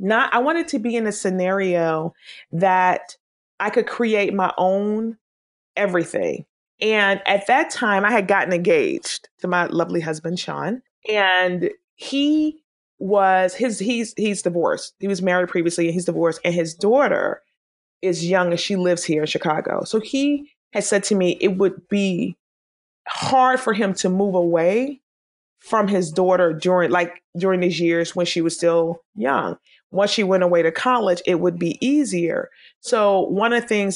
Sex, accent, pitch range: female, American, 175-215 Hz